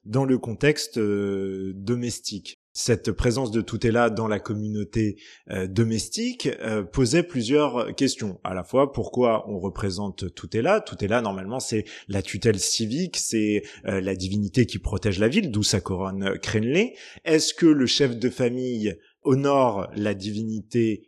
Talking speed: 155 wpm